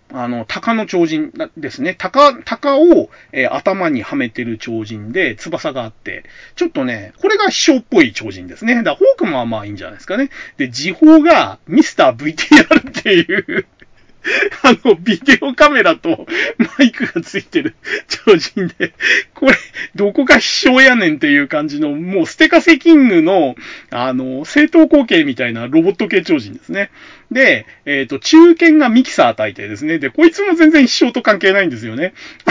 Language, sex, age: Japanese, male, 40-59